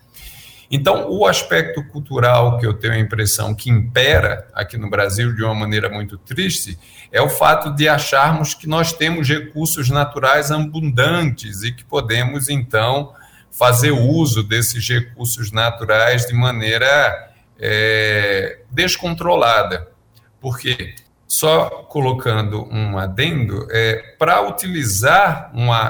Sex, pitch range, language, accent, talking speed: male, 110-150 Hz, Portuguese, Brazilian, 120 wpm